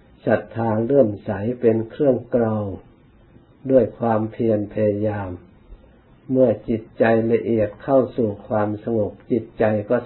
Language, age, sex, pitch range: Thai, 60-79, male, 105-120 Hz